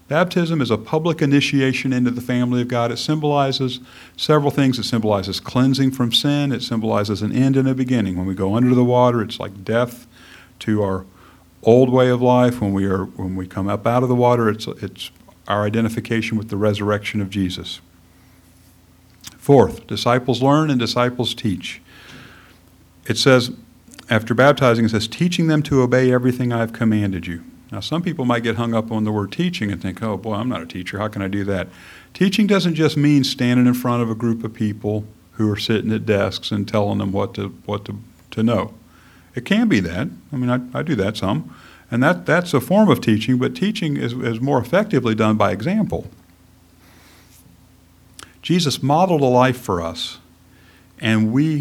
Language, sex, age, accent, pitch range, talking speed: English, male, 50-69, American, 100-130 Hz, 190 wpm